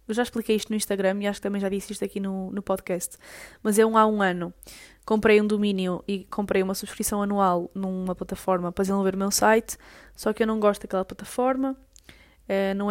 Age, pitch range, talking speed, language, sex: 10-29, 195-230 Hz, 215 wpm, Portuguese, female